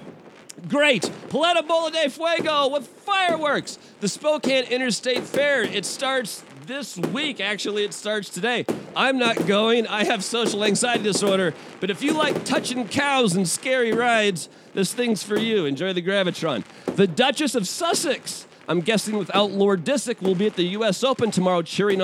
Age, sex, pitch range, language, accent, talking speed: 40-59, male, 195-265 Hz, English, American, 165 wpm